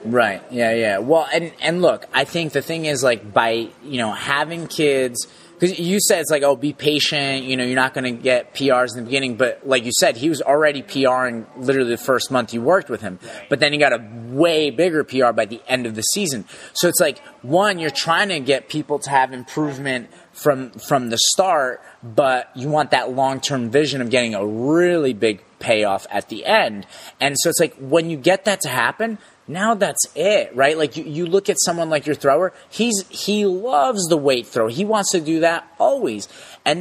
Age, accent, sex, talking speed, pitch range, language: 30-49, American, male, 220 wpm, 125-165 Hz, English